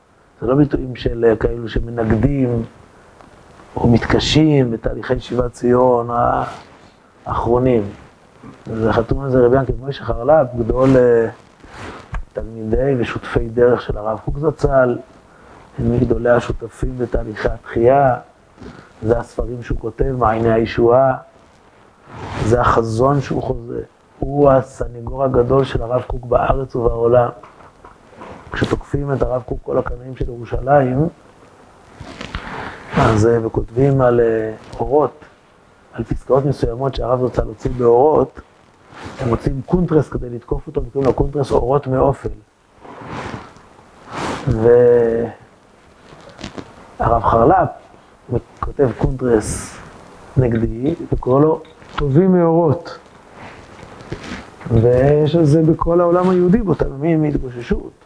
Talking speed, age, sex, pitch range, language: 100 wpm, 30-49, male, 115-140 Hz, Hebrew